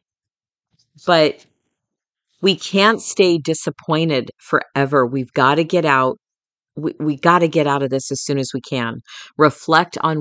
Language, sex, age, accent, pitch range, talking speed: English, female, 40-59, American, 135-165 Hz, 155 wpm